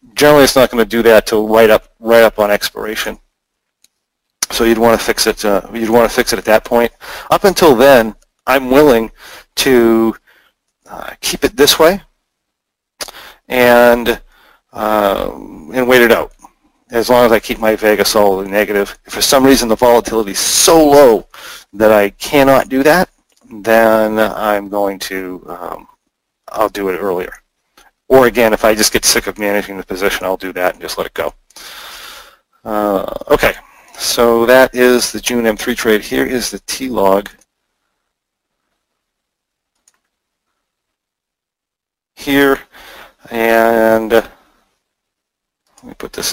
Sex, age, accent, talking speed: male, 40-59, American, 150 wpm